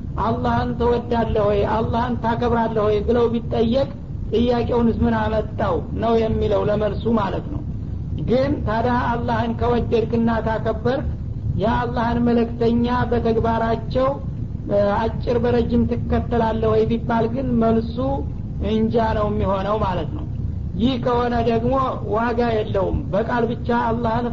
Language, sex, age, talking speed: Amharic, male, 50-69, 95 wpm